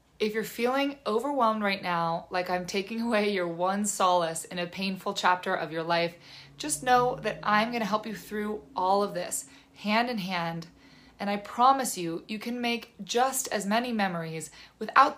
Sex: female